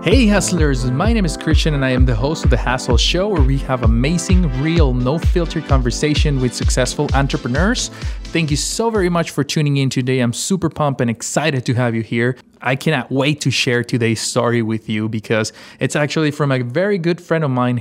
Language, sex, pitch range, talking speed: English, male, 120-150 Hz, 210 wpm